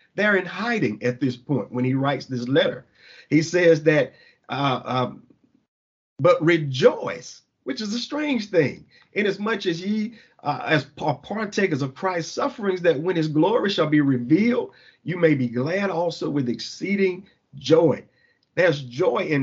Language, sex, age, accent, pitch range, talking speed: English, male, 50-69, American, 150-210 Hz, 155 wpm